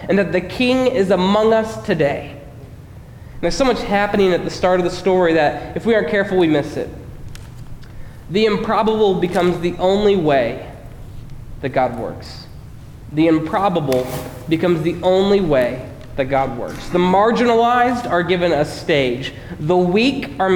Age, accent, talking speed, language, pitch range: 20-39, American, 155 wpm, English, 140-195 Hz